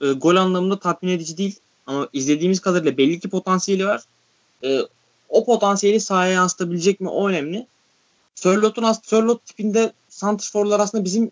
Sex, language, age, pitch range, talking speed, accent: male, Turkish, 20-39, 160-210 Hz, 140 wpm, native